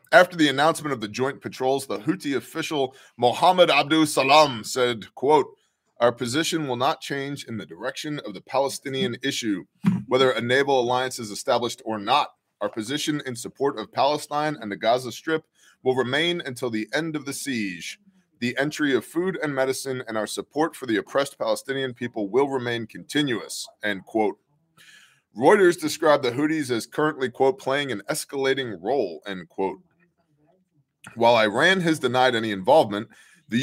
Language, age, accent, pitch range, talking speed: English, 20-39, American, 120-160 Hz, 165 wpm